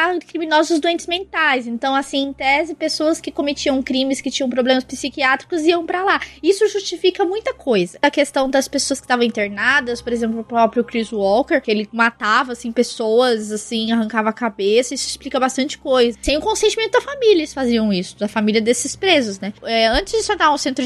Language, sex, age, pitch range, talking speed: Portuguese, female, 20-39, 235-320 Hz, 195 wpm